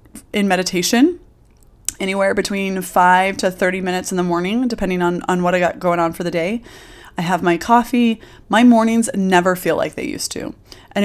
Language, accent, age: English, American, 20-39